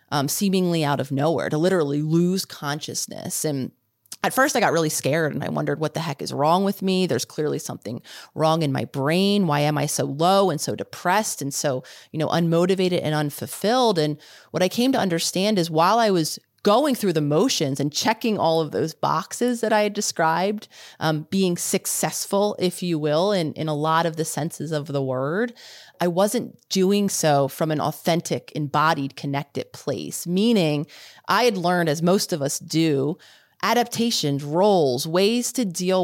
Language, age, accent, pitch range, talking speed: English, 30-49, American, 150-195 Hz, 185 wpm